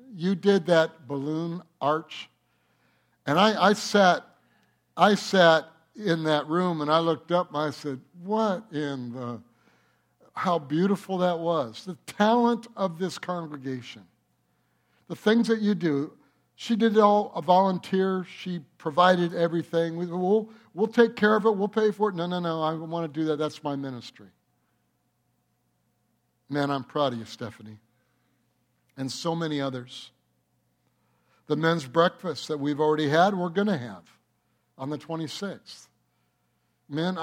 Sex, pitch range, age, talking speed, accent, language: male, 135-185 Hz, 60-79, 150 wpm, American, English